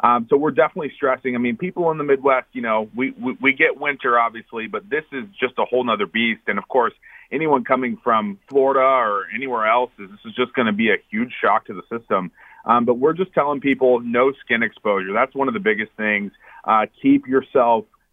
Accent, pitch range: American, 115-135 Hz